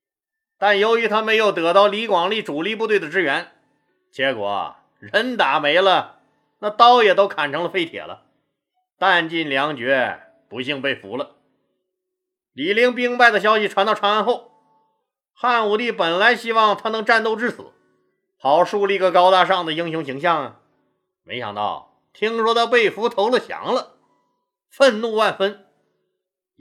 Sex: male